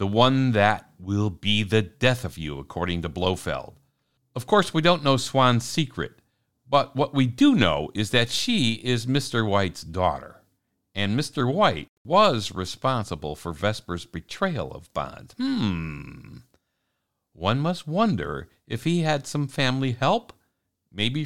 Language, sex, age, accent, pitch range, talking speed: English, male, 60-79, American, 90-140 Hz, 145 wpm